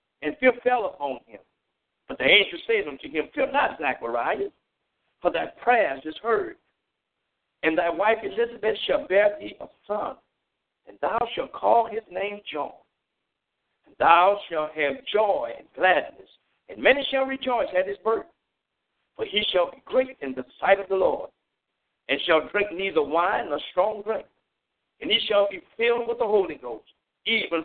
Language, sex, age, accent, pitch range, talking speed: English, male, 60-79, American, 165-255 Hz, 170 wpm